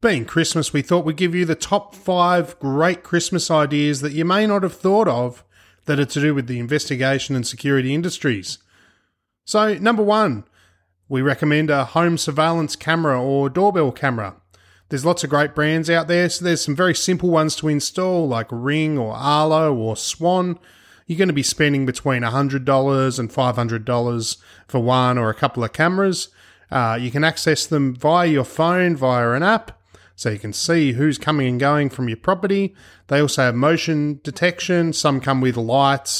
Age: 30-49